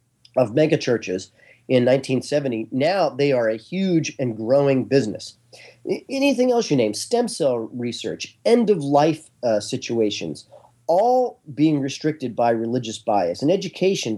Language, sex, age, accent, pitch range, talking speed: English, male, 40-59, American, 120-160 Hz, 125 wpm